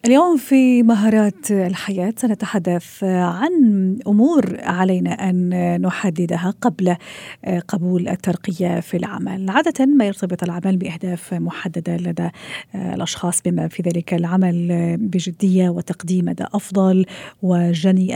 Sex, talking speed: female, 105 wpm